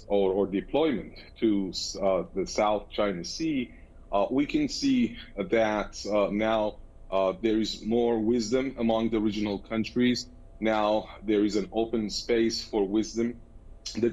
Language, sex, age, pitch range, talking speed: English, male, 30-49, 100-115 Hz, 145 wpm